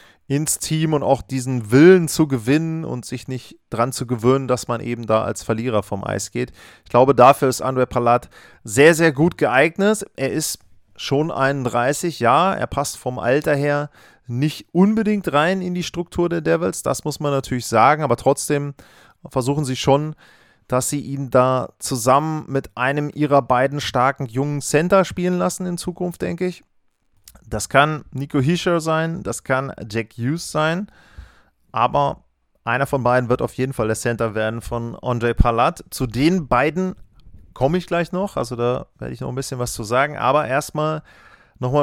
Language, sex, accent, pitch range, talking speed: German, male, German, 125-160 Hz, 175 wpm